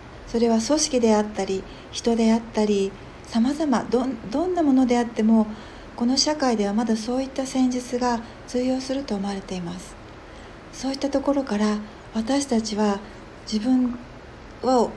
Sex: female